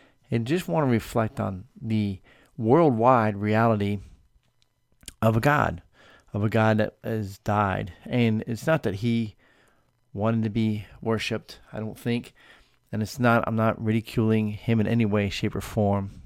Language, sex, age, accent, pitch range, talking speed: English, male, 40-59, American, 105-120 Hz, 160 wpm